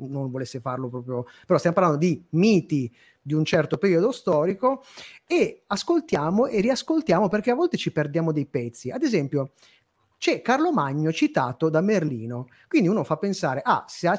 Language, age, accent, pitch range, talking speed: Italian, 30-49, native, 140-195 Hz, 170 wpm